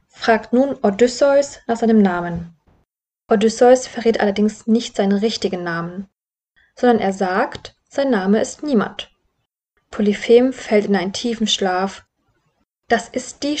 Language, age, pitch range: German, 20-39, 195-245 Hz